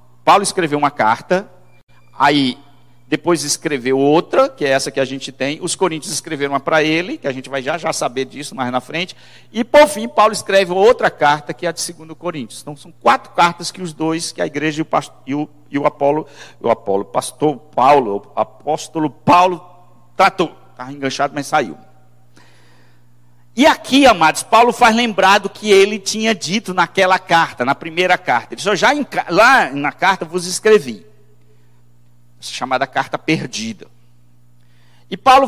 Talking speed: 180 wpm